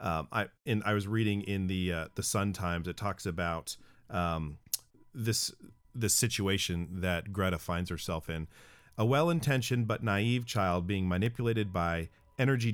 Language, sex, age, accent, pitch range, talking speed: English, male, 40-59, American, 95-120 Hz, 155 wpm